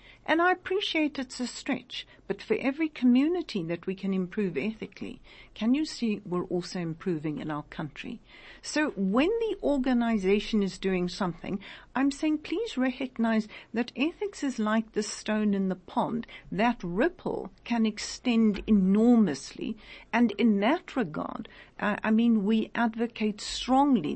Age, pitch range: 60-79, 195-270 Hz